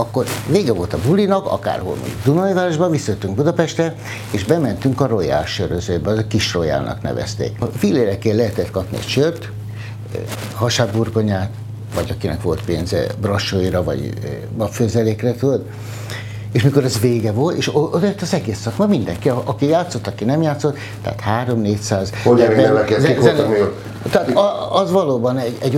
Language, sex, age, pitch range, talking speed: Hungarian, male, 60-79, 110-135 Hz, 125 wpm